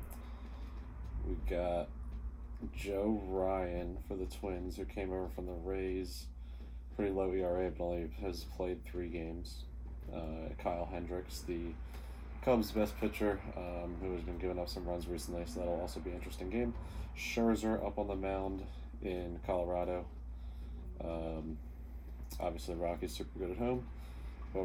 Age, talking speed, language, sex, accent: 20-39, 145 wpm, English, male, American